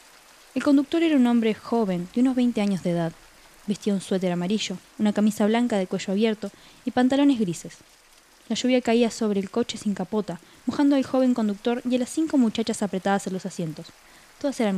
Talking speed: 195 wpm